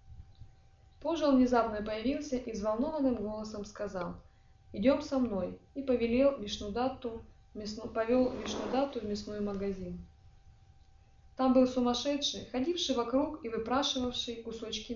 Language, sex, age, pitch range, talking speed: Russian, female, 20-39, 195-250 Hz, 110 wpm